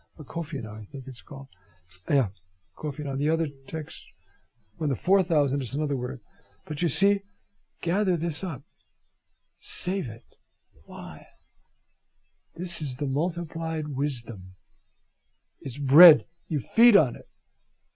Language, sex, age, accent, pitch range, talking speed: English, male, 60-79, American, 125-180 Hz, 125 wpm